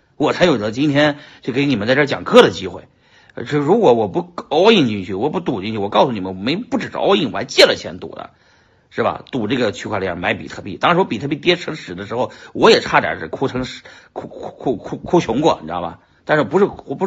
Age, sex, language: 50-69, male, Chinese